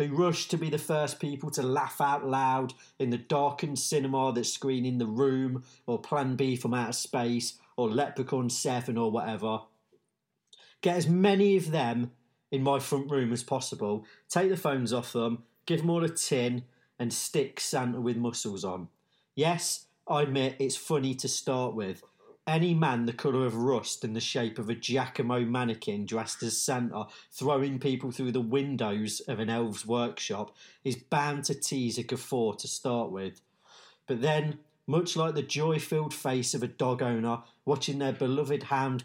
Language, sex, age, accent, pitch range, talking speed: English, male, 40-59, British, 120-145 Hz, 180 wpm